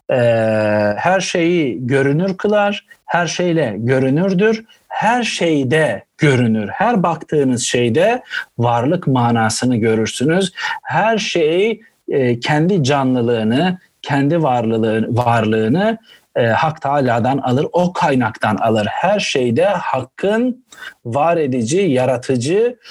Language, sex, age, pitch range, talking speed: Turkish, male, 50-69, 115-175 Hz, 95 wpm